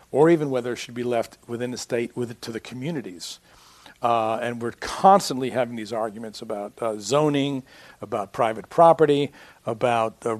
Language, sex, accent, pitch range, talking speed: English, male, American, 115-140 Hz, 160 wpm